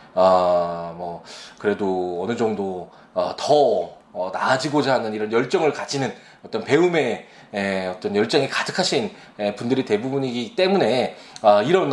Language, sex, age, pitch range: Korean, male, 20-39, 110-175 Hz